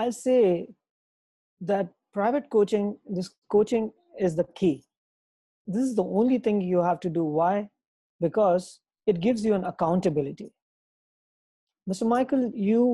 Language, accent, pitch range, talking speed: English, Indian, 170-210 Hz, 135 wpm